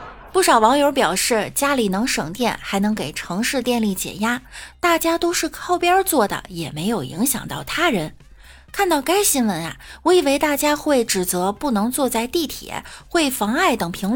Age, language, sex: 20-39, Chinese, female